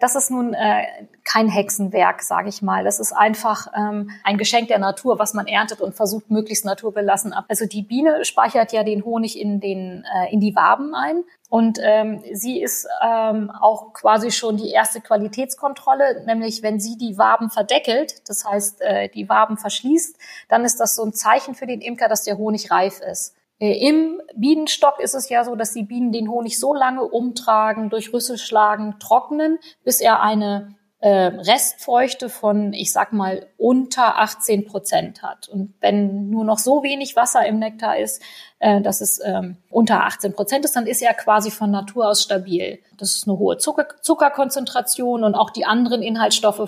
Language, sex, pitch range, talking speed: German, female, 205-240 Hz, 185 wpm